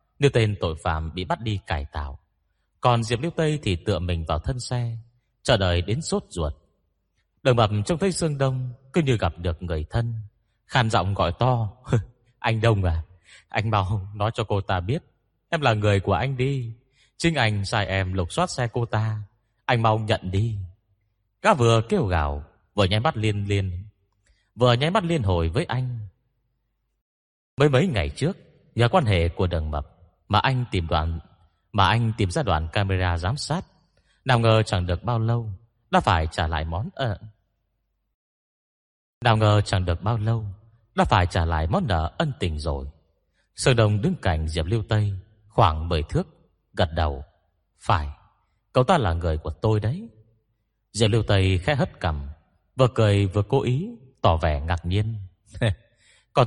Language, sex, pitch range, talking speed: Vietnamese, male, 90-120 Hz, 185 wpm